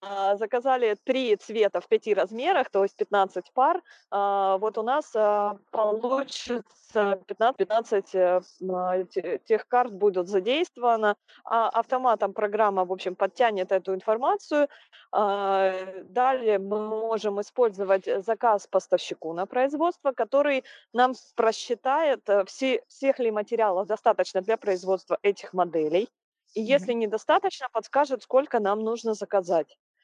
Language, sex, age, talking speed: Ukrainian, female, 20-39, 110 wpm